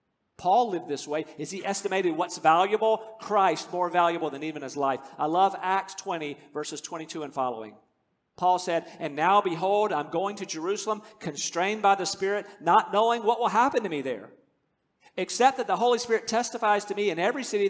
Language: English